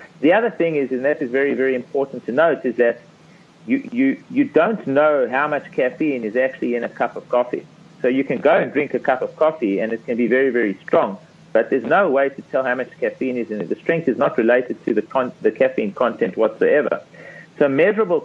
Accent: Australian